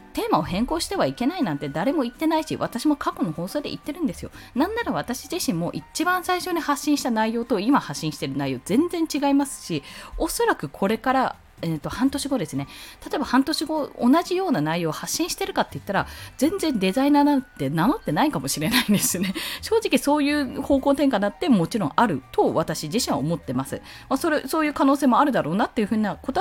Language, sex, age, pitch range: Japanese, female, 20-39, 190-315 Hz